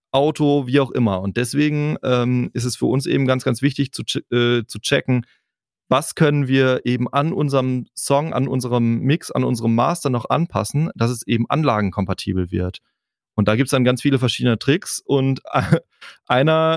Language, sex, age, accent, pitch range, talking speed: German, male, 30-49, German, 110-130 Hz, 175 wpm